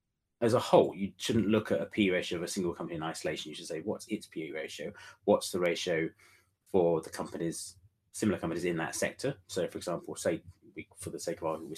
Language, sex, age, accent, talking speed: English, male, 30-49, British, 230 wpm